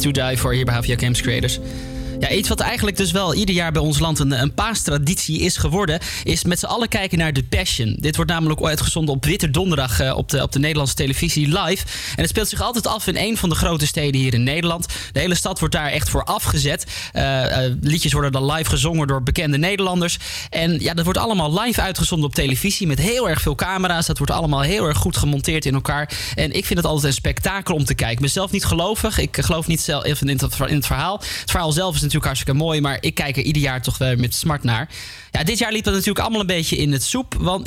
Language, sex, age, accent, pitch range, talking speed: Dutch, male, 20-39, Dutch, 135-175 Hz, 245 wpm